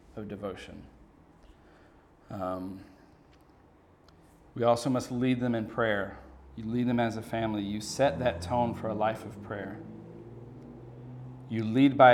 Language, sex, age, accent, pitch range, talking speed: English, male, 40-59, American, 100-120 Hz, 135 wpm